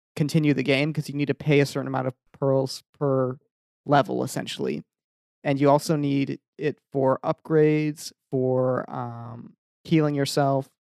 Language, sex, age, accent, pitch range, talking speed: English, male, 30-49, American, 135-155 Hz, 150 wpm